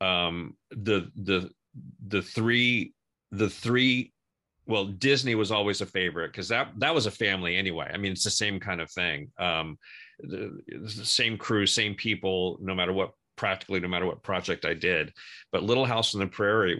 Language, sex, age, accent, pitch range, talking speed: English, male, 40-59, American, 95-115 Hz, 180 wpm